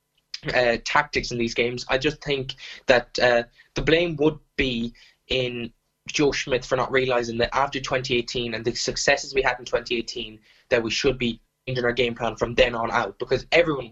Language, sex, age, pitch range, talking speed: English, male, 10-29, 120-145 Hz, 190 wpm